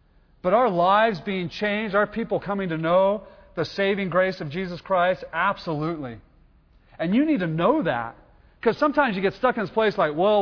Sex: male